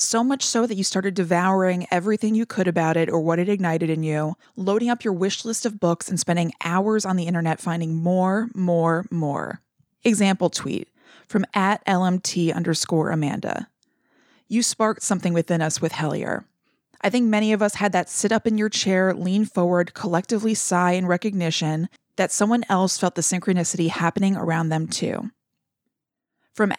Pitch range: 170-220 Hz